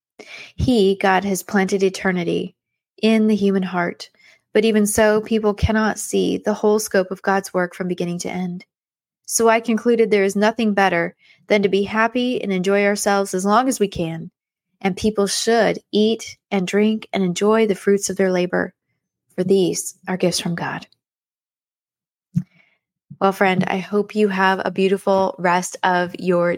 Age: 20-39